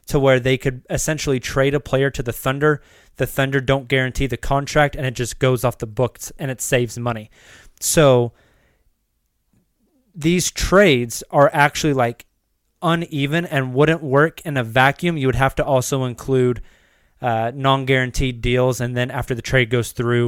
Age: 20-39